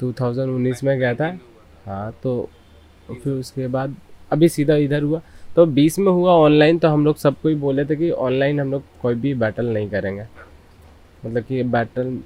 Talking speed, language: 175 wpm, Hindi